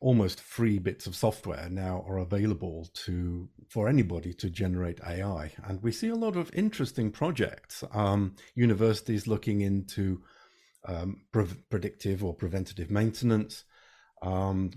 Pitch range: 100-125 Hz